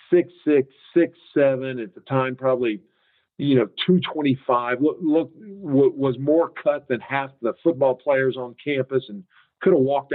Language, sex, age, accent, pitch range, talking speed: English, male, 50-69, American, 115-140 Hz, 160 wpm